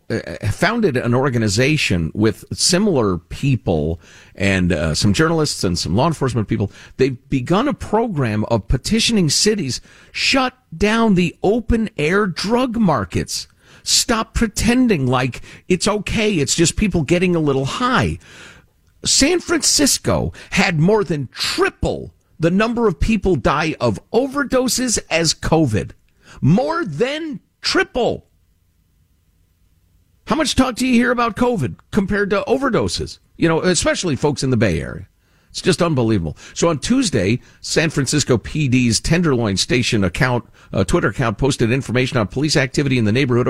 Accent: American